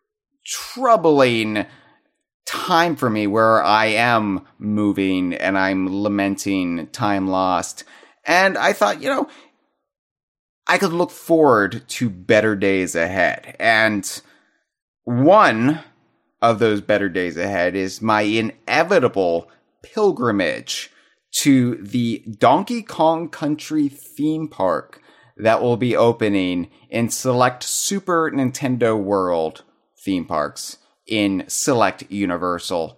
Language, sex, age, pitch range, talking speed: English, male, 30-49, 100-155 Hz, 105 wpm